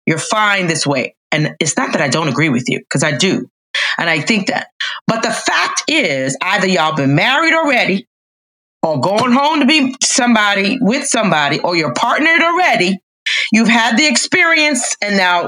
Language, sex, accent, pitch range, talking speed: English, female, American, 185-255 Hz, 180 wpm